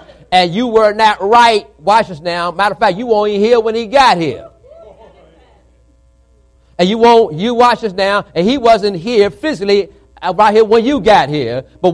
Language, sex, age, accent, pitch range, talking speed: English, male, 40-59, American, 160-225 Hz, 190 wpm